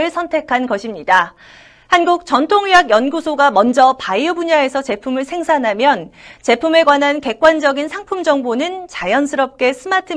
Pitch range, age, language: 255-355 Hz, 40-59, Korean